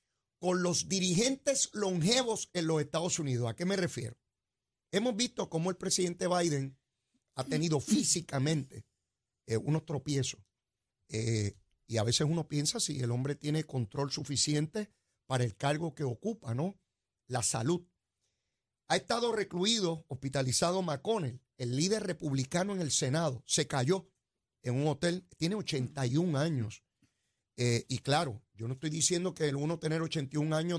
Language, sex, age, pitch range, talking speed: Spanish, male, 40-59, 130-180 Hz, 150 wpm